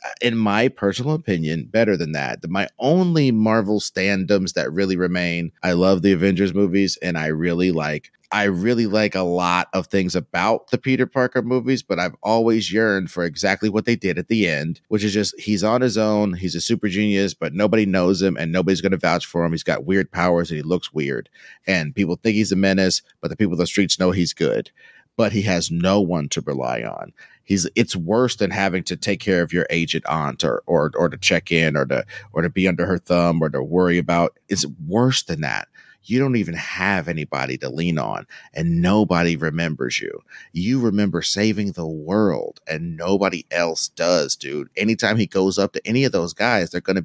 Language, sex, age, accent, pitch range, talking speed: English, male, 30-49, American, 85-110 Hz, 215 wpm